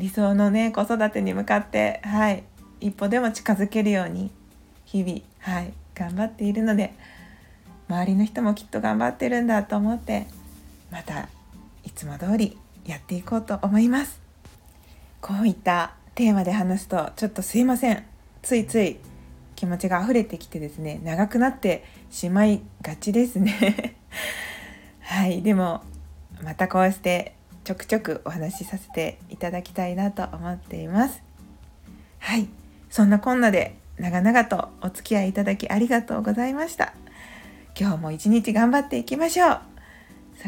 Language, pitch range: Japanese, 180-230 Hz